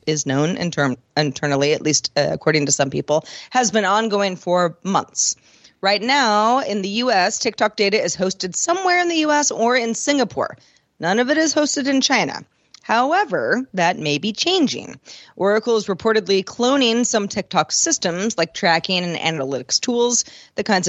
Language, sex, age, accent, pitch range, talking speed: English, female, 30-49, American, 165-235 Hz, 165 wpm